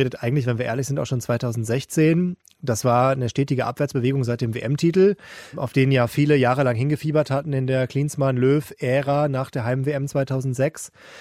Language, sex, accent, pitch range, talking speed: German, male, German, 125-155 Hz, 160 wpm